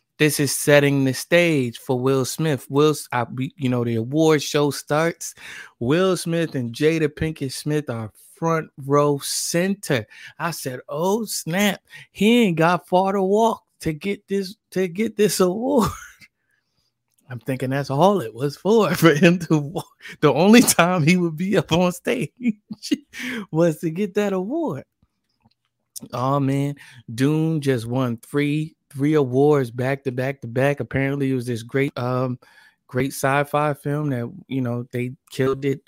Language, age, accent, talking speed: English, 20-39, American, 160 wpm